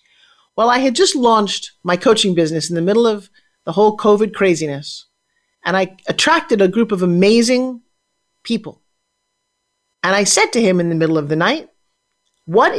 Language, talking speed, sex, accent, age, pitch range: English, 170 wpm, male, American, 40-59, 175-215 Hz